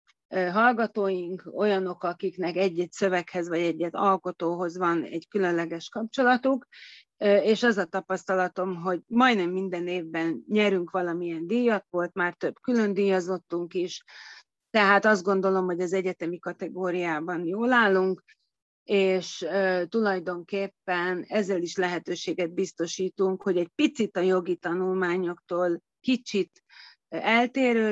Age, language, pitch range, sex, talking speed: 30-49, Hungarian, 175-200 Hz, female, 110 wpm